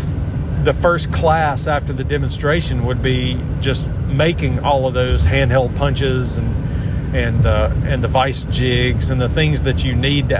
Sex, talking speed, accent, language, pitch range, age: male, 165 wpm, American, English, 115-135 Hz, 40-59